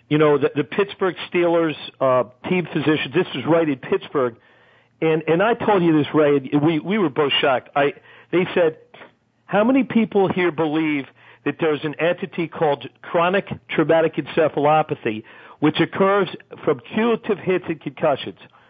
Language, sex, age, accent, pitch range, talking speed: English, male, 50-69, American, 155-215 Hz, 155 wpm